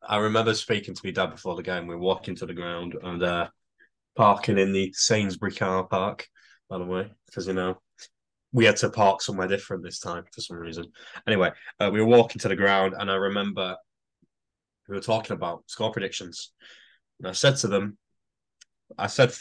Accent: British